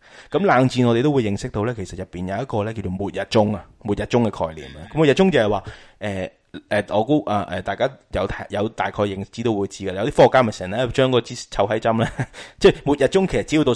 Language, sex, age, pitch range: Chinese, male, 20-39, 100-125 Hz